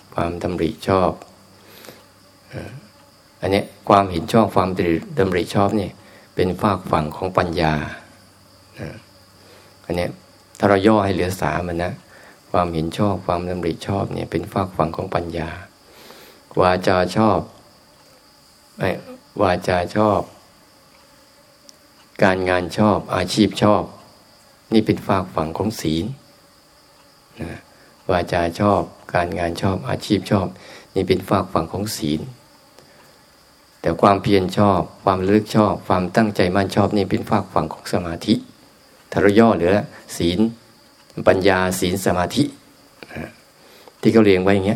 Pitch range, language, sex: 90-105 Hz, Thai, male